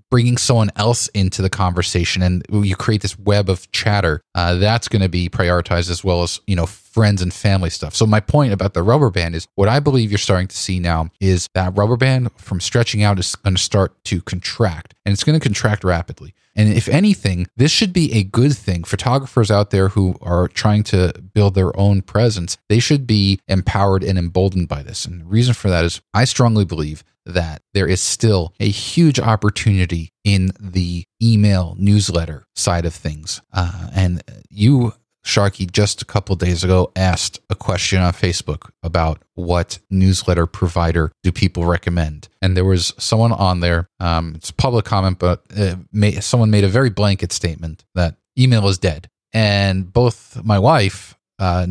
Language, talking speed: English, 185 wpm